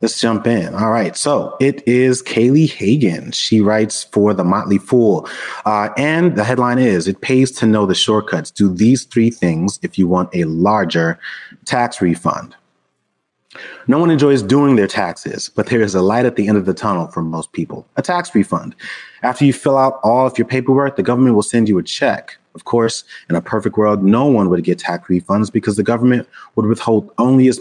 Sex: male